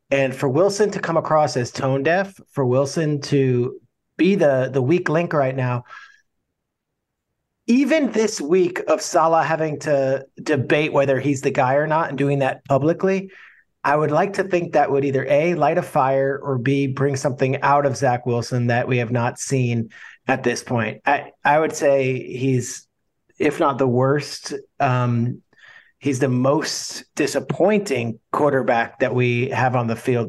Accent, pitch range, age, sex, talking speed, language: American, 125-150 Hz, 40-59, male, 170 wpm, English